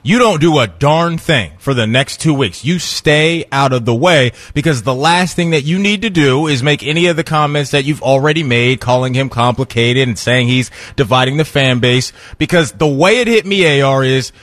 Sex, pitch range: male, 125-170 Hz